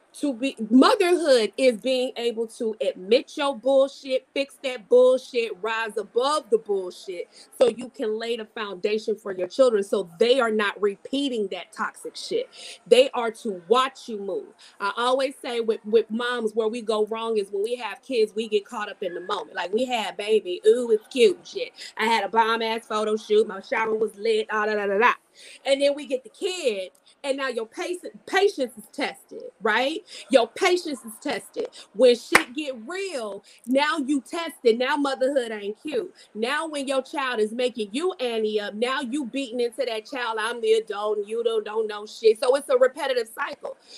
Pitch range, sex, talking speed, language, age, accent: 225-350 Hz, female, 195 wpm, English, 30-49, American